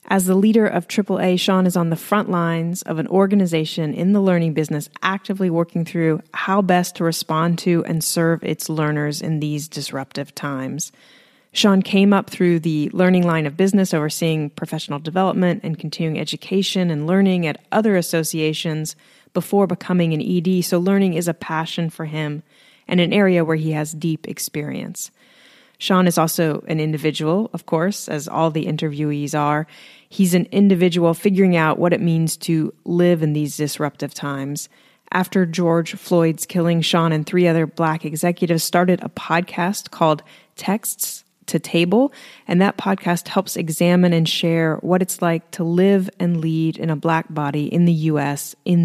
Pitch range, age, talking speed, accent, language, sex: 160-190 Hz, 30-49, 170 wpm, American, English, female